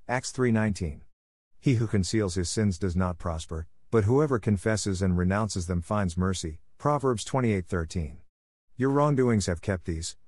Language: English